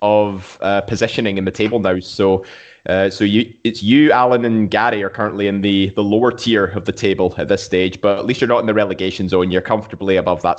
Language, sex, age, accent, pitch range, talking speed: English, male, 20-39, British, 100-115 Hz, 240 wpm